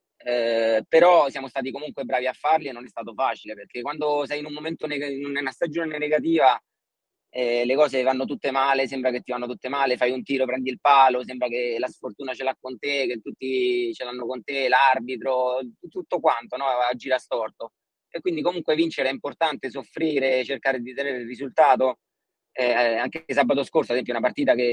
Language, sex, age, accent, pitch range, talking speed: Italian, male, 30-49, native, 120-145 Hz, 205 wpm